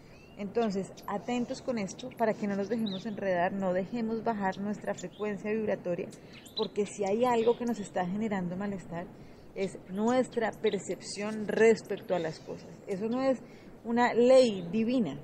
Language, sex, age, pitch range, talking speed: Spanish, female, 30-49, 195-230 Hz, 150 wpm